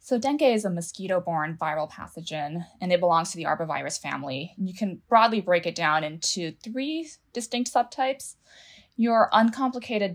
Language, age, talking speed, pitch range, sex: English, 20-39, 155 wpm, 165-215 Hz, female